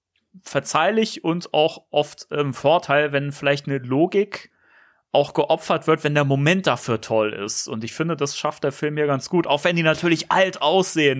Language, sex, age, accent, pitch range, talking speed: German, male, 30-49, German, 140-175 Hz, 190 wpm